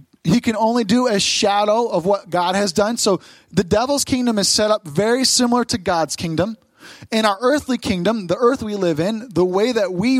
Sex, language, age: male, English, 30-49